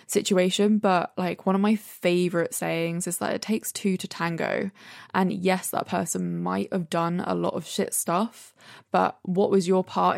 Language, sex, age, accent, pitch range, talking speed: English, female, 20-39, British, 170-195 Hz, 190 wpm